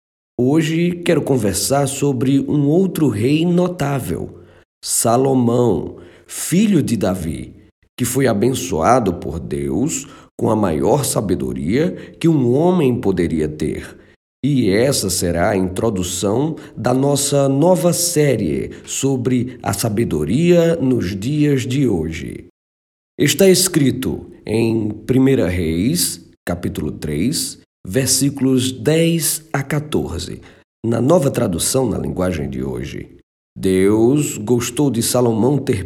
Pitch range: 95-140 Hz